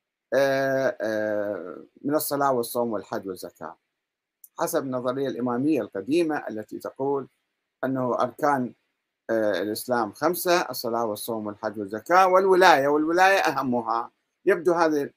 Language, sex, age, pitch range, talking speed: Arabic, male, 50-69, 125-175 Hz, 95 wpm